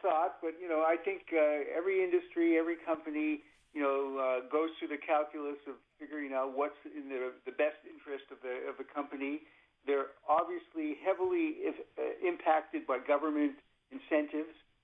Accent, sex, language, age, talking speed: American, male, English, 50-69, 170 wpm